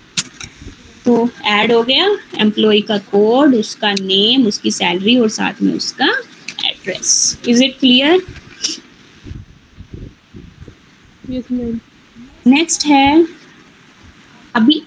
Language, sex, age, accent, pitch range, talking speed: Hindi, female, 20-39, native, 230-295 Hz, 90 wpm